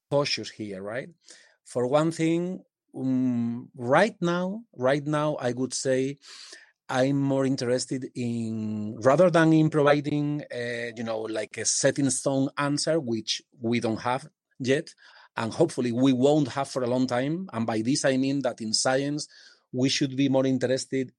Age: 30-49